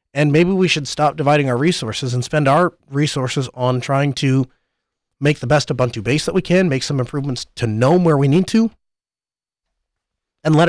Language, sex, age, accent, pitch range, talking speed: English, male, 30-49, American, 120-155 Hz, 190 wpm